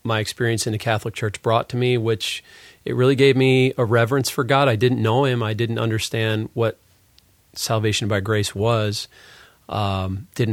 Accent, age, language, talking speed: American, 40-59, English, 195 wpm